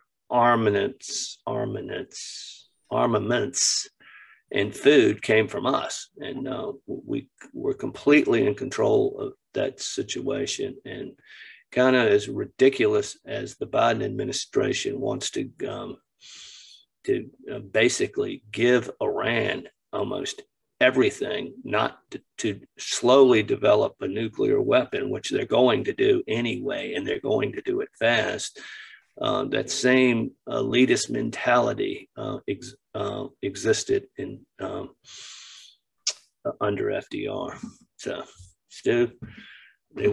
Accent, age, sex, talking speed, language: American, 50-69, male, 110 wpm, English